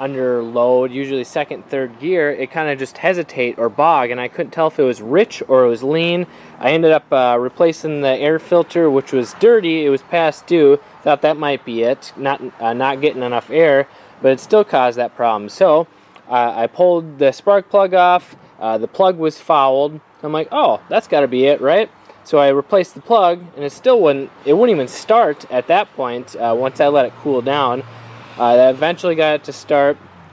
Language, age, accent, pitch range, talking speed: English, 20-39, American, 125-170 Hz, 215 wpm